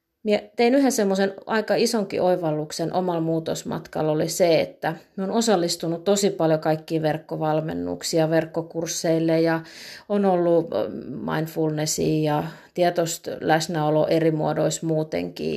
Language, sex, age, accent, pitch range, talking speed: Finnish, female, 30-49, native, 160-195 Hz, 110 wpm